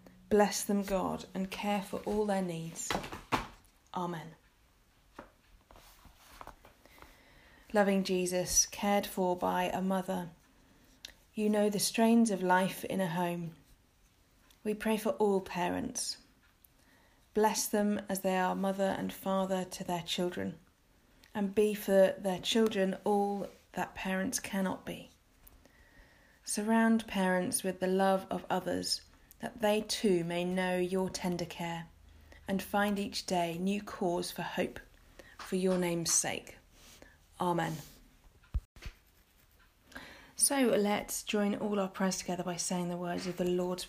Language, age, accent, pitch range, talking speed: English, 30-49, British, 175-205 Hz, 130 wpm